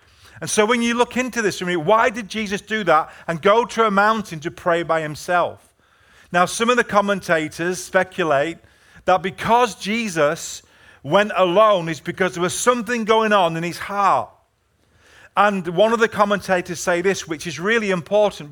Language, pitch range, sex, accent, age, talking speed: English, 160-215 Hz, male, British, 40-59, 180 wpm